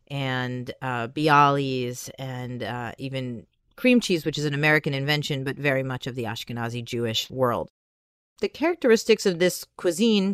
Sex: female